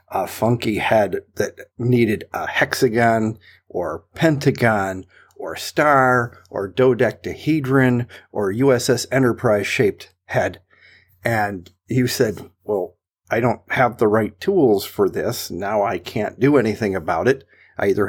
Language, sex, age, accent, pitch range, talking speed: English, male, 50-69, American, 100-130 Hz, 130 wpm